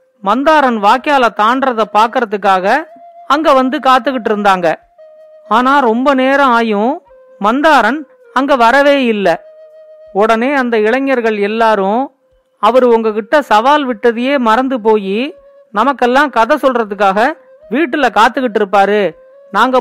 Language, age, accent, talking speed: Tamil, 40-59, native, 100 wpm